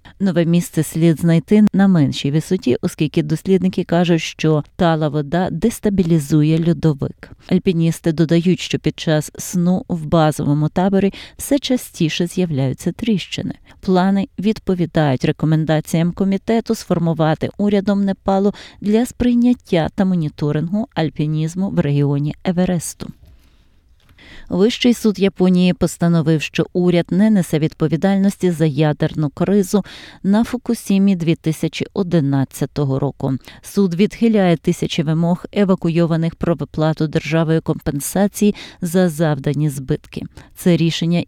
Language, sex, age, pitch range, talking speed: Ukrainian, female, 30-49, 155-195 Hz, 105 wpm